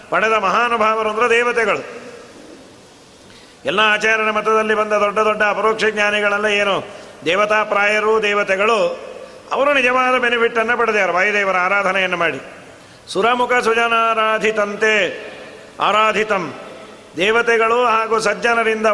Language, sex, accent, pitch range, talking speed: Kannada, male, native, 190-220 Hz, 95 wpm